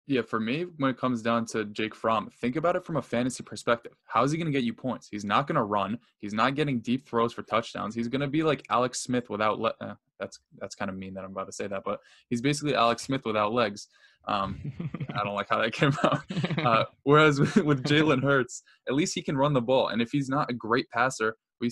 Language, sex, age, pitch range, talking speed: English, male, 10-29, 110-125 Hz, 260 wpm